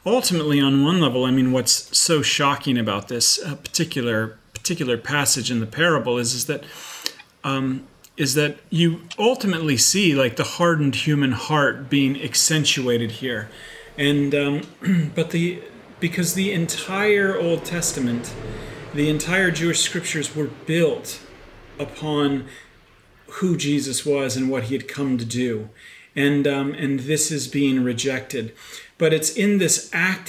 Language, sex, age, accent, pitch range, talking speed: English, male, 40-59, American, 135-165 Hz, 145 wpm